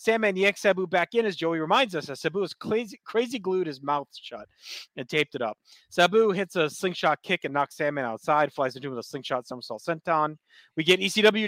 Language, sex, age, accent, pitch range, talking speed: English, male, 30-49, American, 155-200 Hz, 225 wpm